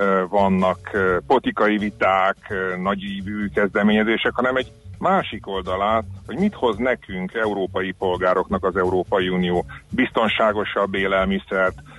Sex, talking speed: male, 105 wpm